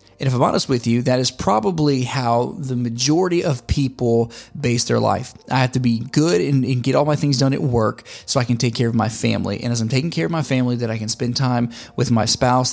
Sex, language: male, English